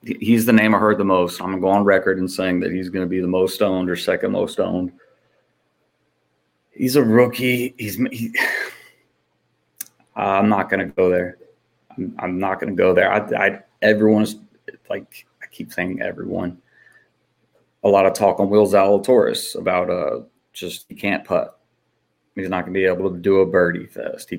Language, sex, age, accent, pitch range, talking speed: English, male, 30-49, American, 95-115 Hz, 195 wpm